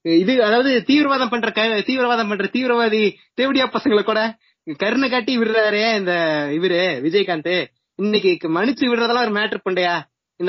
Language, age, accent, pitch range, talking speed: Tamil, 20-39, native, 190-235 Hz, 135 wpm